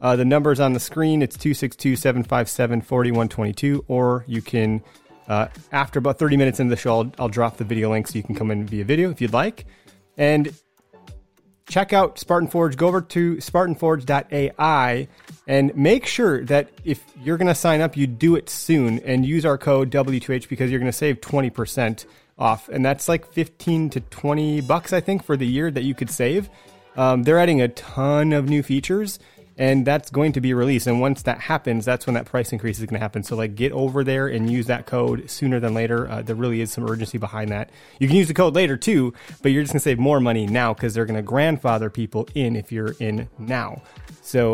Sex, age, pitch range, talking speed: male, 30-49, 115-150 Hz, 215 wpm